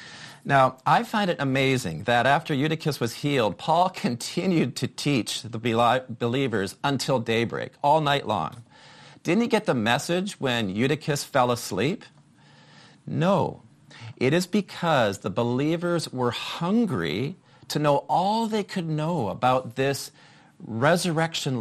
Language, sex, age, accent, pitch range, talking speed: English, male, 40-59, American, 120-160 Hz, 130 wpm